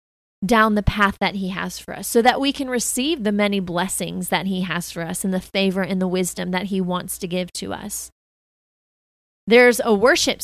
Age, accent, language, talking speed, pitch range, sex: 20-39, American, English, 215 wpm, 180-225 Hz, female